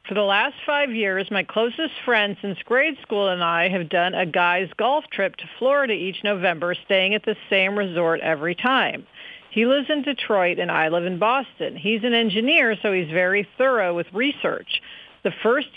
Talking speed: 190 wpm